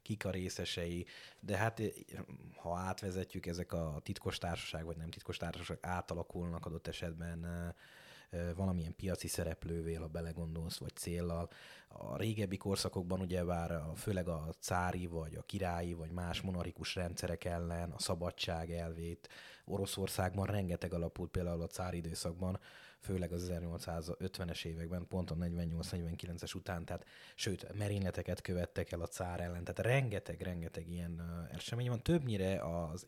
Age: 20-39